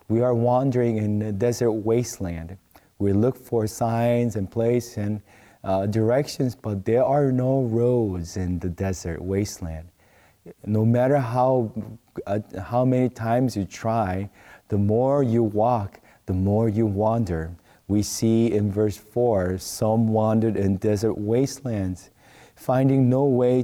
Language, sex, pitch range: English, male, 105-125 Hz